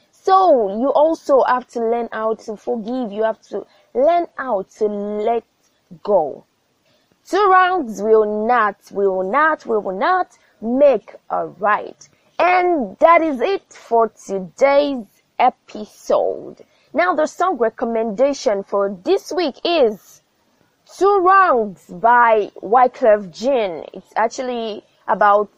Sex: female